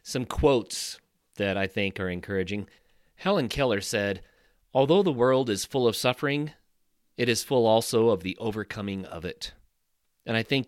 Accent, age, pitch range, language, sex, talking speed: American, 40-59, 105-140 Hz, English, male, 165 wpm